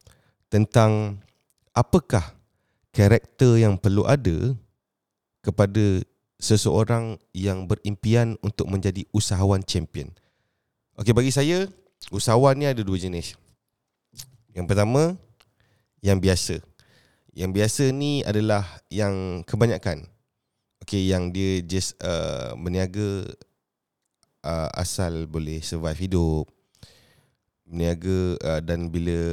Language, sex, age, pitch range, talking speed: Indonesian, male, 30-49, 95-120 Hz, 95 wpm